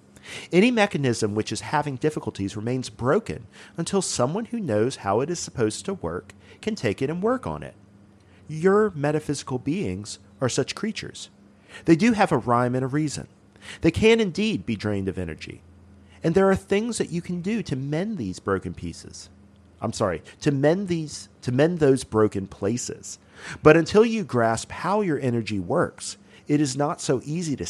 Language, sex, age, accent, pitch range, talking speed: English, male, 40-59, American, 105-165 Hz, 180 wpm